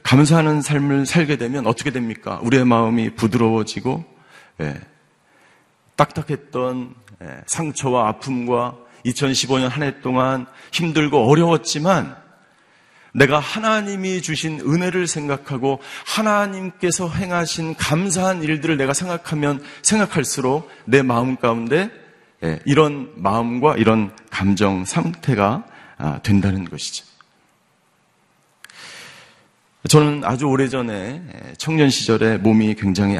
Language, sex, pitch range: Korean, male, 115-155 Hz